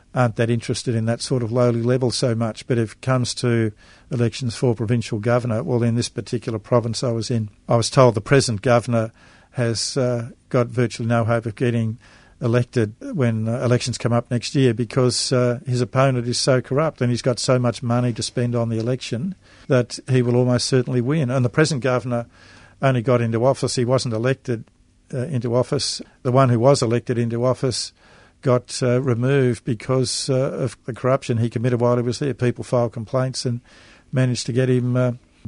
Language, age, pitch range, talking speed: English, 50-69, 115-130 Hz, 200 wpm